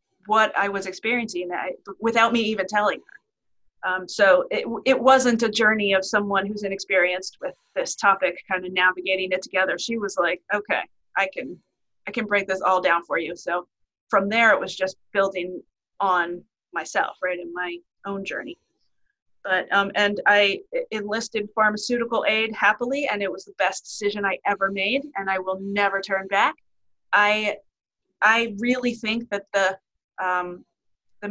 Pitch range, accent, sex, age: 185-230 Hz, American, female, 30-49